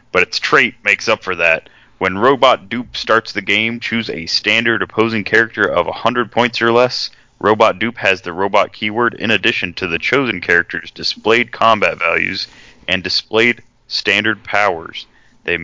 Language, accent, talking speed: English, American, 165 wpm